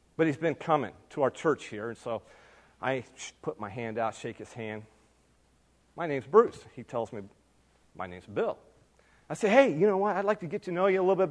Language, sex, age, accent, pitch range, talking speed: English, male, 40-59, American, 120-165 Hz, 230 wpm